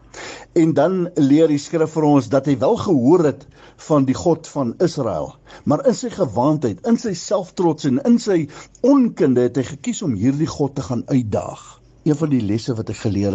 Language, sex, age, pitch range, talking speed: English, male, 60-79, 125-175 Hz, 200 wpm